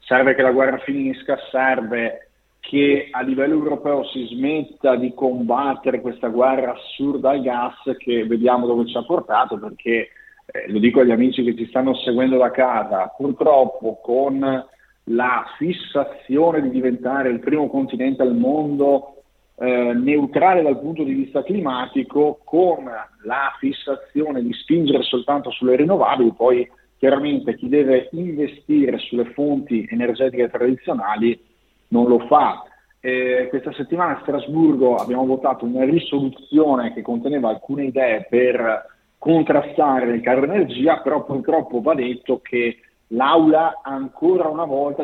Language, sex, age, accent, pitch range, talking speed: Italian, male, 40-59, native, 125-145 Hz, 135 wpm